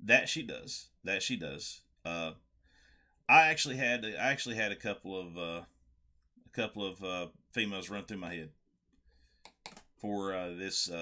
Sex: male